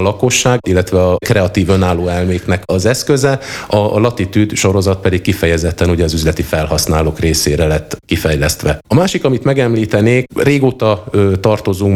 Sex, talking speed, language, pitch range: male, 130 wpm, Hungarian, 85-105 Hz